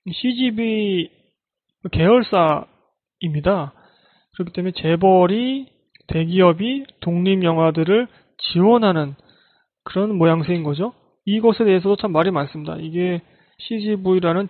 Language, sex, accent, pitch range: Korean, male, native, 165-210 Hz